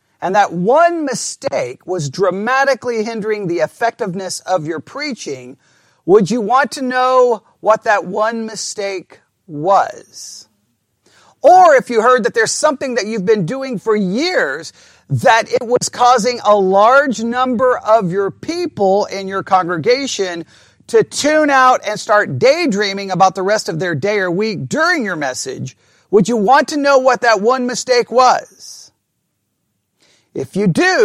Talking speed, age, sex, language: 150 wpm, 40-59, male, English